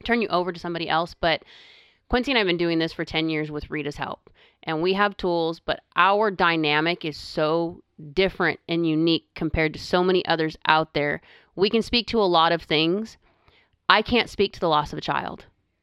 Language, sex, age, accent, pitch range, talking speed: English, female, 30-49, American, 160-195 Hz, 210 wpm